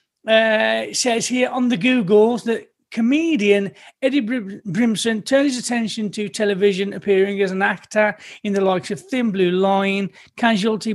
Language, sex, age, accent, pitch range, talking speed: English, male, 30-49, British, 190-230 Hz, 155 wpm